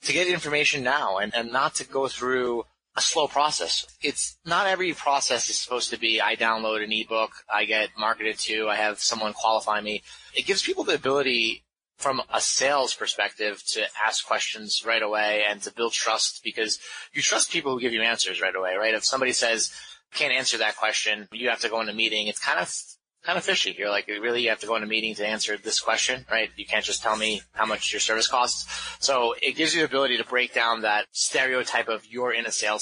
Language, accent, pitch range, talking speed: English, American, 110-130 Hz, 225 wpm